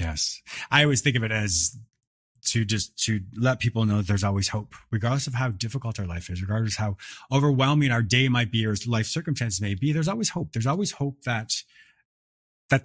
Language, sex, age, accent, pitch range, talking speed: English, male, 30-49, American, 110-145 Hz, 210 wpm